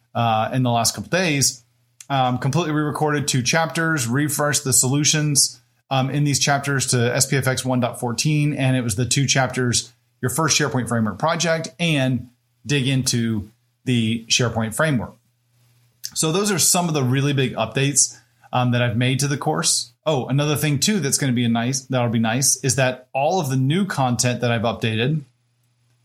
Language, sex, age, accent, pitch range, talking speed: English, male, 30-49, American, 120-145 Hz, 180 wpm